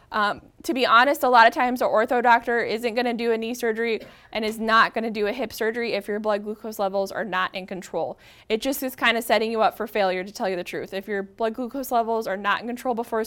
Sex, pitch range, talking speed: female, 200-250 Hz, 275 wpm